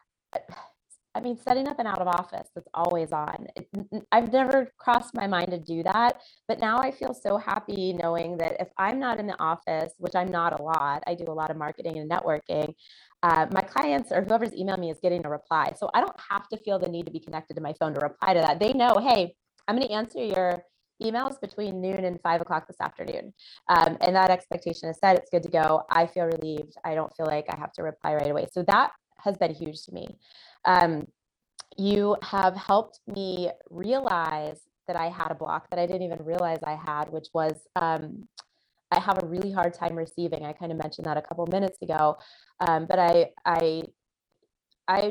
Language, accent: English, American